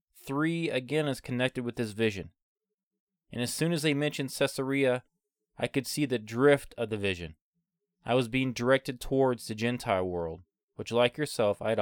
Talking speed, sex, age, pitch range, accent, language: 180 wpm, male, 20-39, 110-145 Hz, American, English